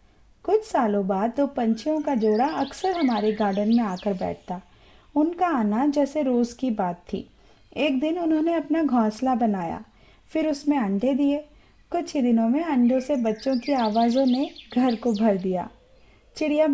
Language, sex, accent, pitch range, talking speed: Hindi, female, native, 225-285 Hz, 165 wpm